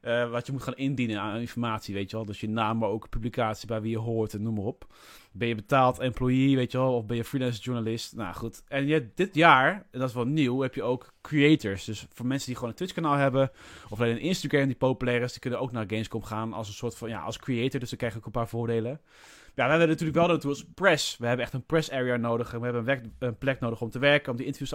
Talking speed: 280 wpm